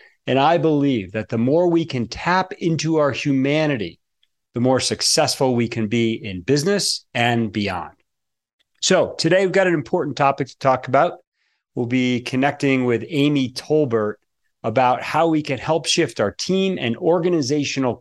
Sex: male